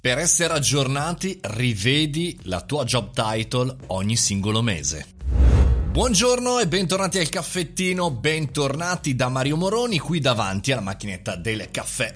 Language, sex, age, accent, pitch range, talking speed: Italian, male, 30-49, native, 105-145 Hz, 130 wpm